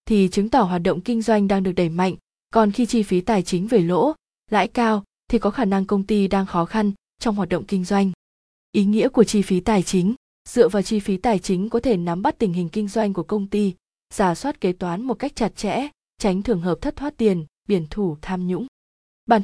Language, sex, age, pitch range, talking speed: Vietnamese, female, 20-39, 185-225 Hz, 240 wpm